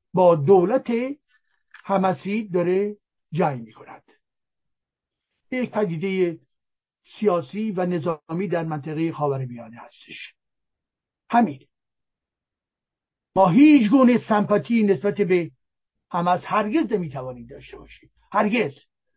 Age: 60-79